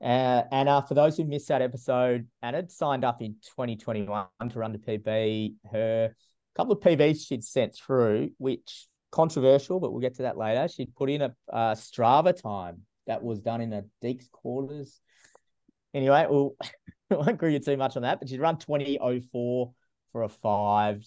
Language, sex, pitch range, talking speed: English, male, 105-140 Hz, 180 wpm